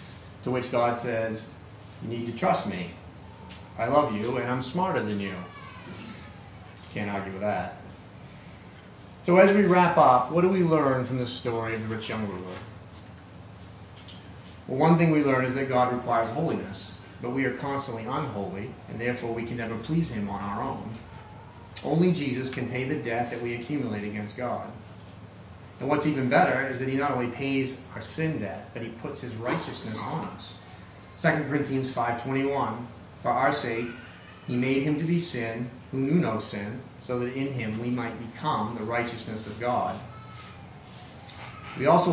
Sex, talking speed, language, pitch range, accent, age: male, 175 wpm, English, 105-135 Hz, American, 30-49